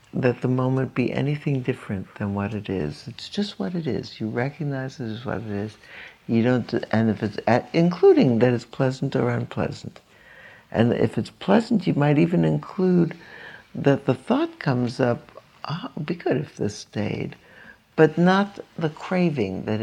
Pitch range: 105-155 Hz